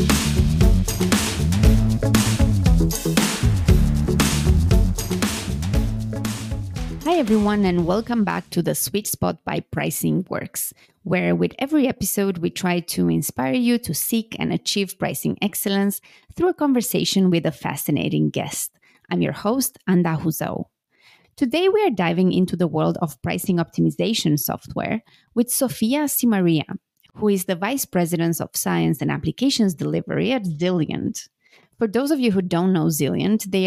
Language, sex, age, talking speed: English, female, 30-49, 130 wpm